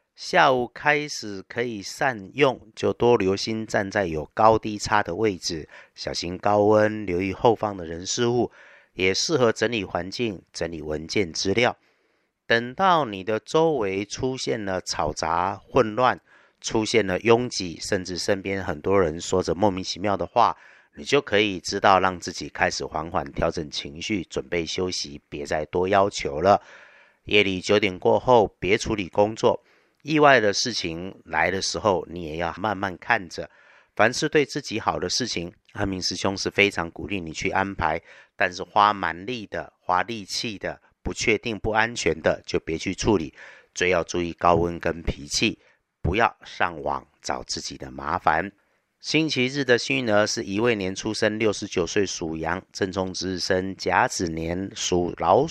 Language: Chinese